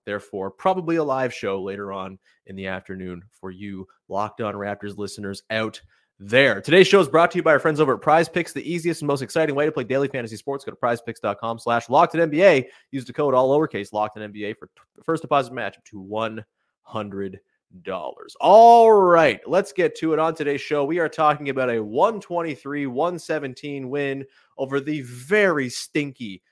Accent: American